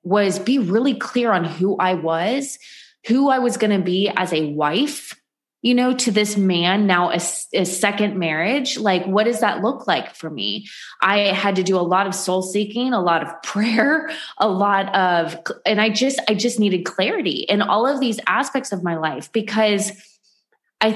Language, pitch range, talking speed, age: English, 175-240 Hz, 195 wpm, 20-39